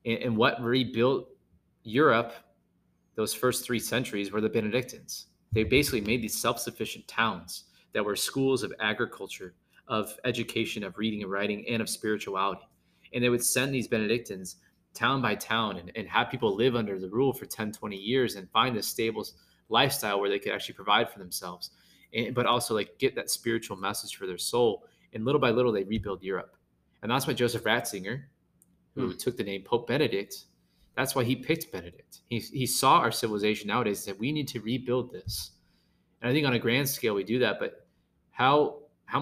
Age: 20-39